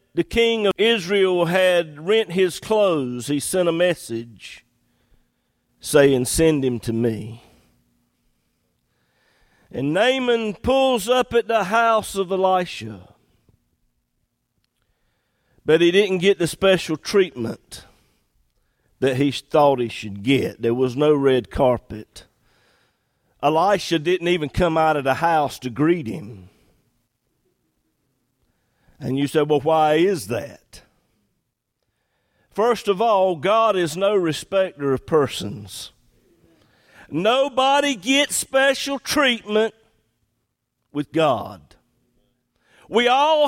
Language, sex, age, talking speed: English, male, 50-69, 110 wpm